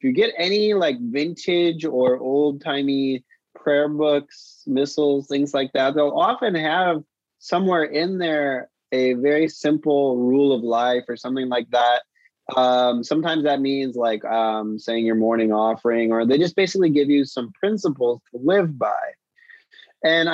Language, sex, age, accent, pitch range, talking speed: English, male, 20-39, American, 120-155 Hz, 155 wpm